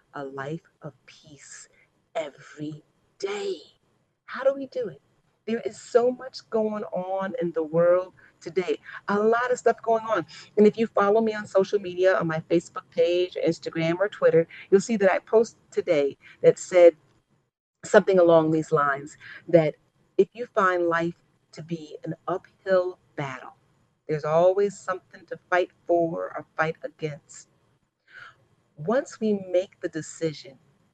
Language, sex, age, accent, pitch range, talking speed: English, female, 40-59, American, 165-220 Hz, 150 wpm